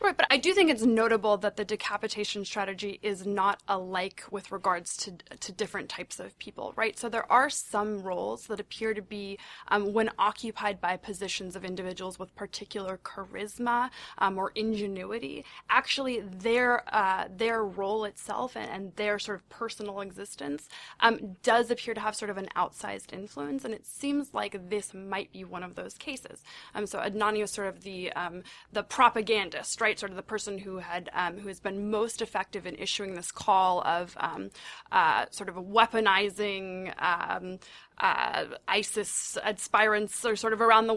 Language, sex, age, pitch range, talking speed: English, female, 20-39, 190-225 Hz, 175 wpm